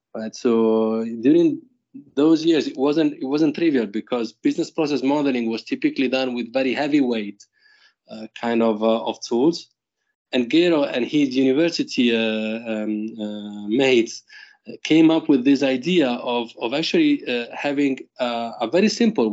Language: English